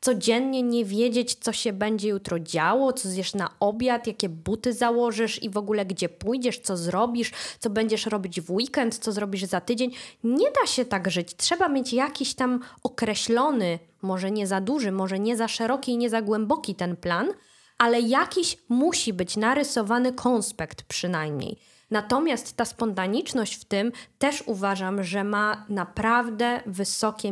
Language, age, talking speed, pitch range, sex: Polish, 20-39, 160 wpm, 200-260 Hz, female